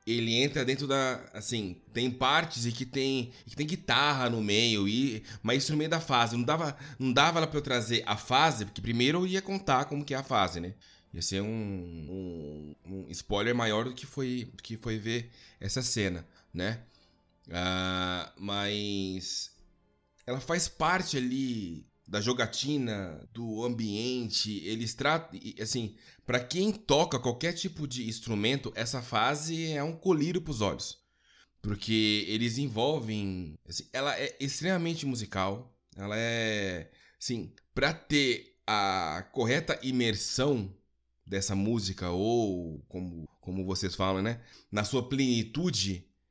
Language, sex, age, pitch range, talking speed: Portuguese, male, 20-39, 100-135 Hz, 150 wpm